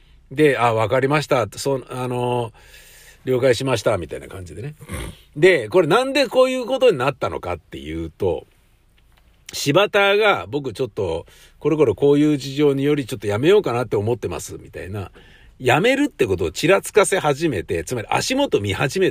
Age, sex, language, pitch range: 50-69, male, Japanese, 125-200 Hz